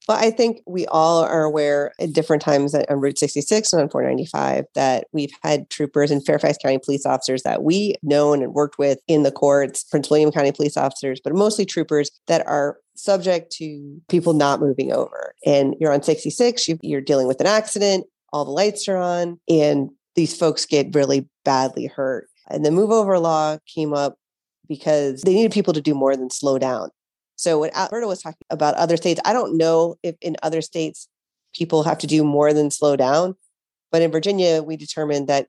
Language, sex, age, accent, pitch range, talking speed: English, female, 30-49, American, 145-175 Hz, 200 wpm